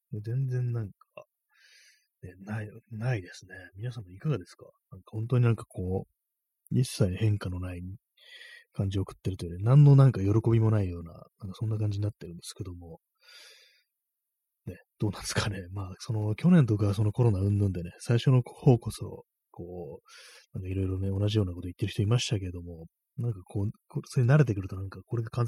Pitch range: 95-130 Hz